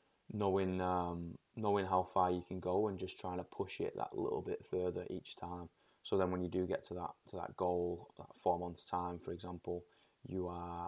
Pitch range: 90-95 Hz